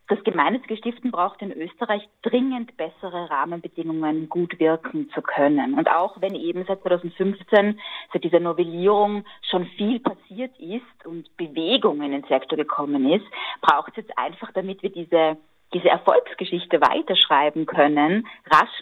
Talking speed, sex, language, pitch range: 145 wpm, female, German, 160-195 Hz